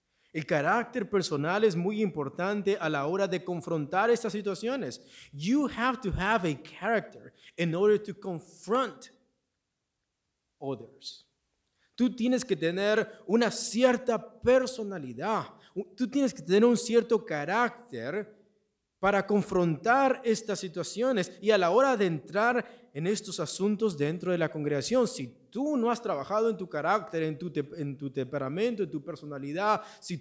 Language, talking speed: English, 145 wpm